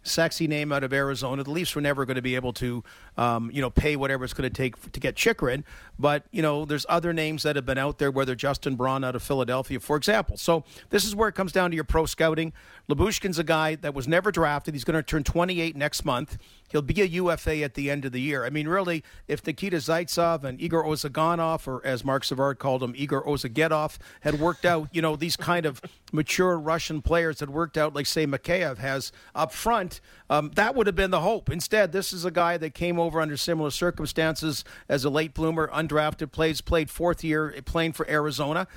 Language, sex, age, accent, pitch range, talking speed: English, male, 50-69, American, 140-170 Hz, 230 wpm